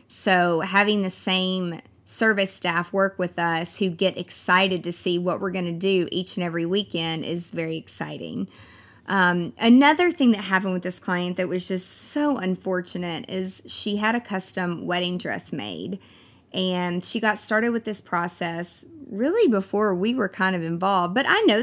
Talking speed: 180 wpm